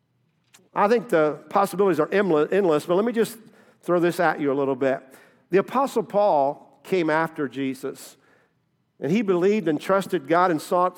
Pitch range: 155-210 Hz